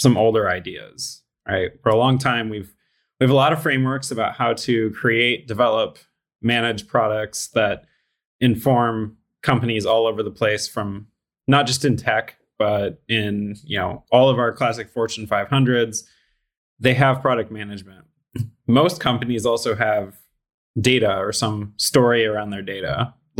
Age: 20-39